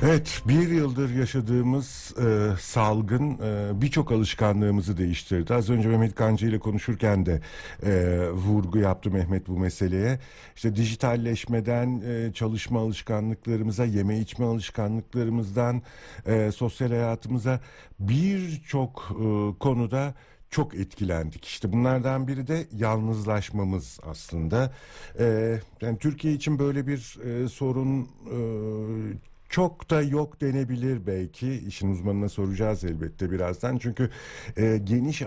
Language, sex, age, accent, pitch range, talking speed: Turkish, male, 60-79, native, 95-125 Hz, 115 wpm